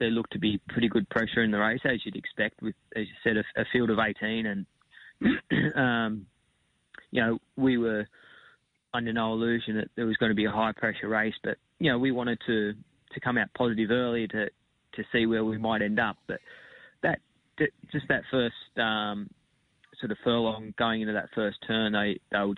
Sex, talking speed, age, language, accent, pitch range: male, 200 wpm, 20-39, English, Australian, 105-115 Hz